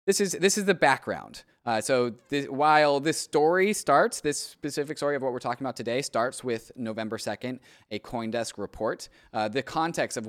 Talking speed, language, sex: 190 wpm, English, male